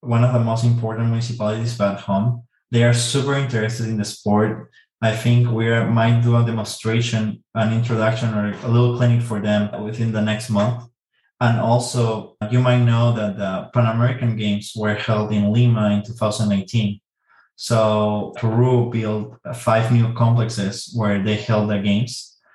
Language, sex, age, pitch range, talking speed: English, male, 20-39, 110-120 Hz, 160 wpm